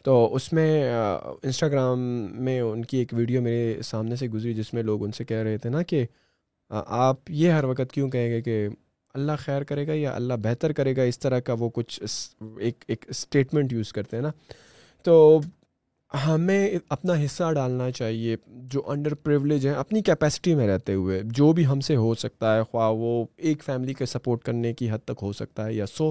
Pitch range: 120-150 Hz